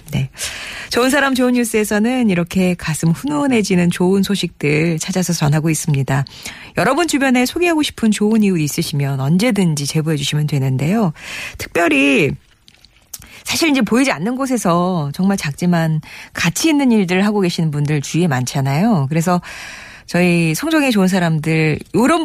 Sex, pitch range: female, 150-215 Hz